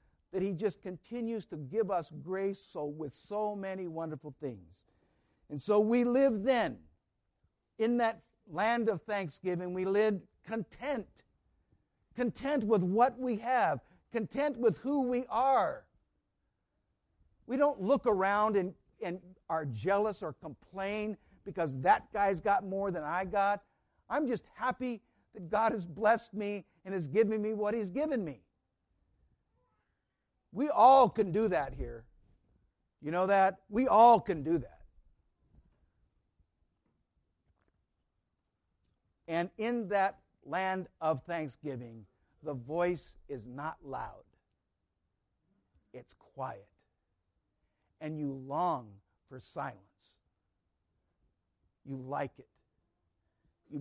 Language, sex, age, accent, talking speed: English, male, 60-79, American, 120 wpm